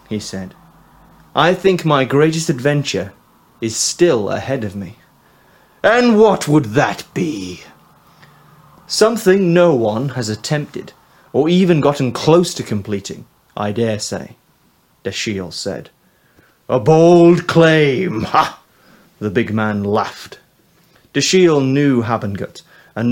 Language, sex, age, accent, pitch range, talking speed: English, male, 30-49, British, 105-145 Hz, 115 wpm